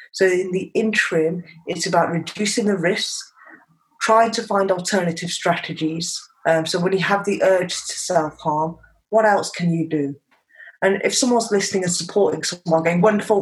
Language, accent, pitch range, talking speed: English, British, 160-185 Hz, 170 wpm